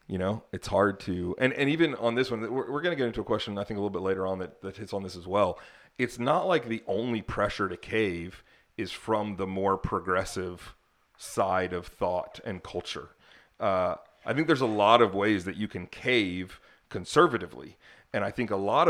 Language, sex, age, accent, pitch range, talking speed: English, male, 30-49, American, 105-140 Hz, 215 wpm